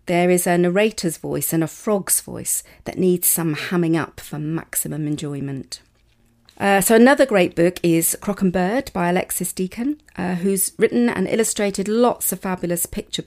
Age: 40-59